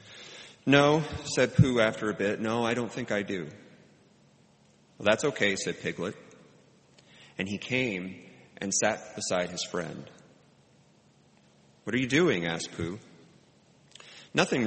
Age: 40-59